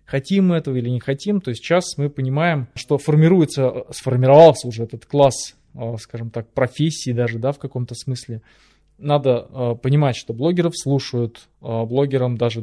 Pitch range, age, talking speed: 115-140 Hz, 20-39, 145 wpm